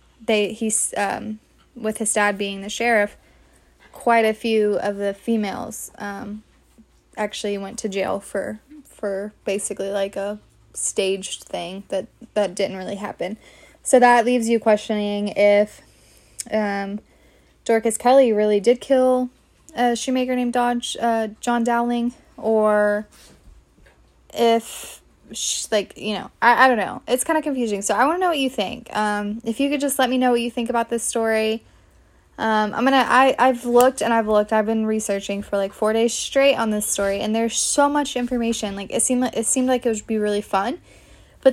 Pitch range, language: 205-245 Hz, English